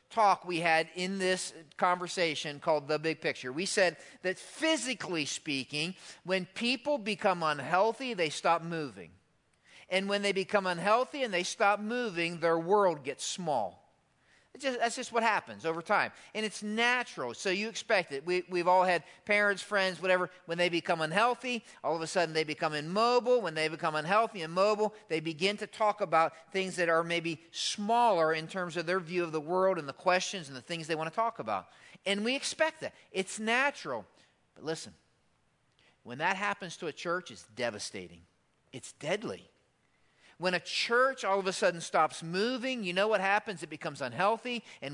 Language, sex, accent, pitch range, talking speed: English, male, American, 160-210 Hz, 180 wpm